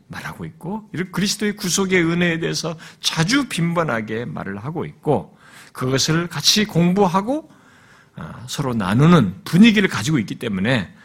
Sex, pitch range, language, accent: male, 125-195 Hz, Korean, native